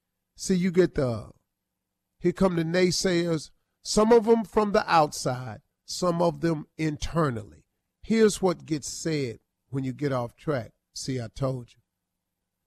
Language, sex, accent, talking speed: English, male, American, 145 wpm